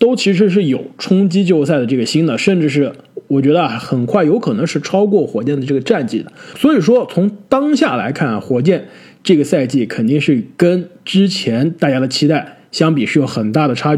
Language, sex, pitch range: Chinese, male, 140-230 Hz